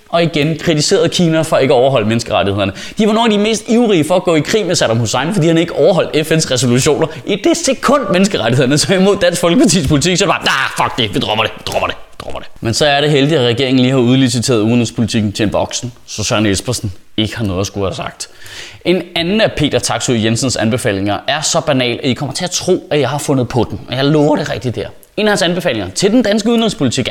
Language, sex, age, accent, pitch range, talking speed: Danish, male, 20-39, native, 130-210 Hz, 250 wpm